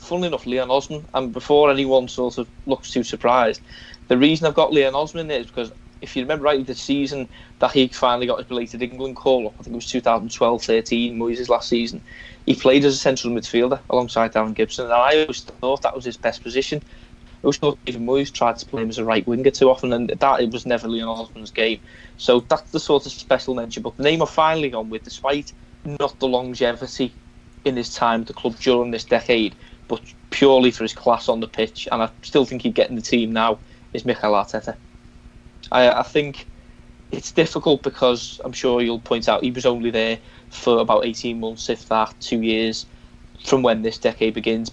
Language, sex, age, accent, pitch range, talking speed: English, male, 20-39, British, 115-135 Hz, 215 wpm